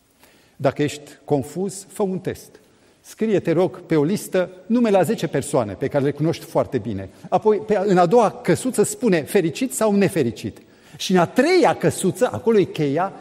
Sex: male